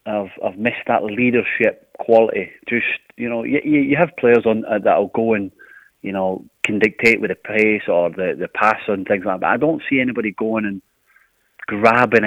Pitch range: 100-115 Hz